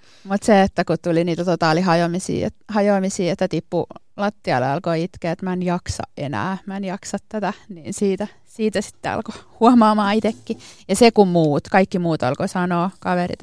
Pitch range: 175-215 Hz